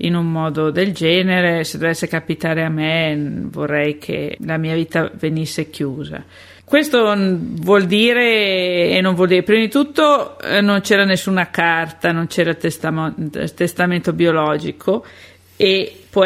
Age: 50-69